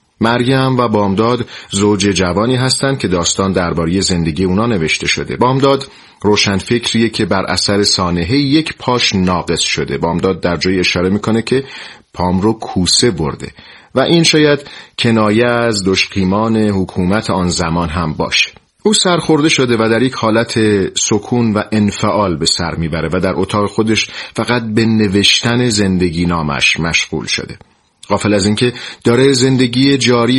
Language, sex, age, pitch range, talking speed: Persian, male, 40-59, 90-120 Hz, 150 wpm